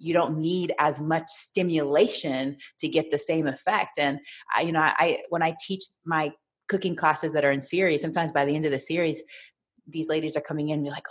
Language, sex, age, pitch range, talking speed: English, female, 30-49, 145-180 Hz, 220 wpm